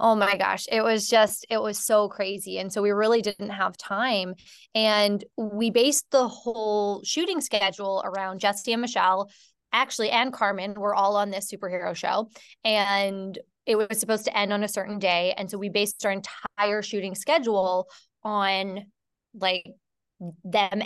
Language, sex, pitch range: English, female, 195-230 Hz